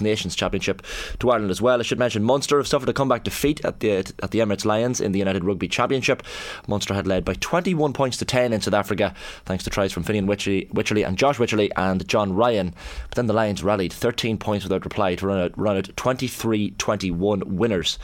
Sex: male